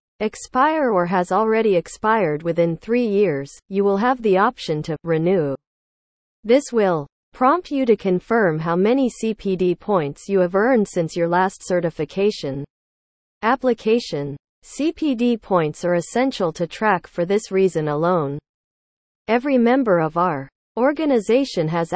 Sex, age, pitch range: female, 40-59, 170-225 Hz